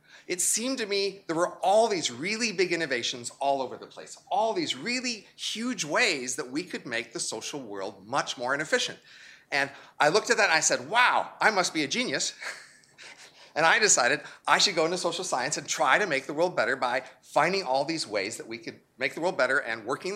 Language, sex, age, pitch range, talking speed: English, male, 30-49, 135-200 Hz, 220 wpm